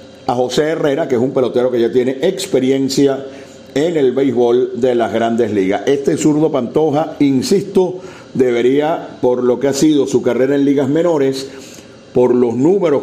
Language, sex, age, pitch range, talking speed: Spanish, male, 50-69, 125-145 Hz, 165 wpm